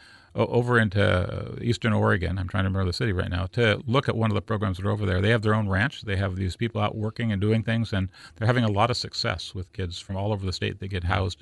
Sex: male